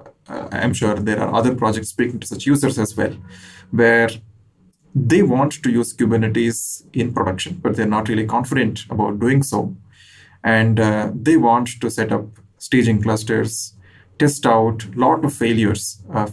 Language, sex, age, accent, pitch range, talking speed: English, male, 30-49, Indian, 105-120 Hz, 165 wpm